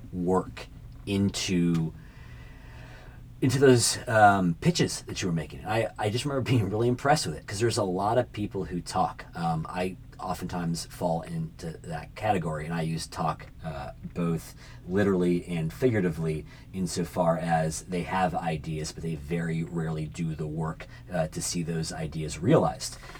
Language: English